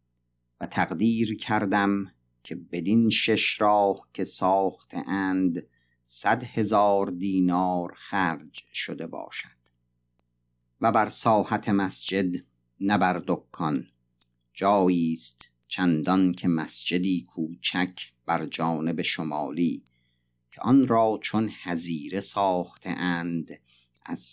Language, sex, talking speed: Persian, male, 90 wpm